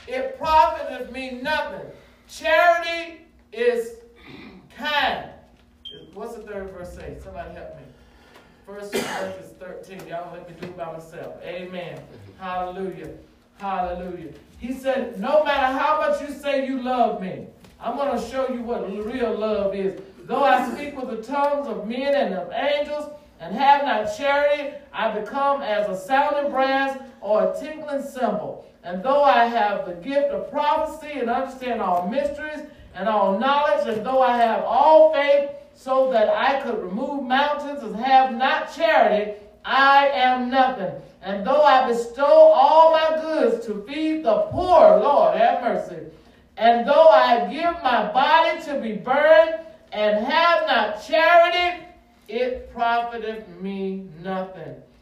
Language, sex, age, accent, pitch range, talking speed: English, male, 50-69, American, 210-295 Hz, 150 wpm